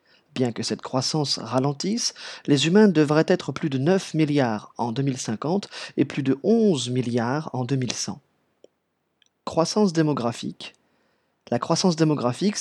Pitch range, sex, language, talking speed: 125-160 Hz, male, French, 130 wpm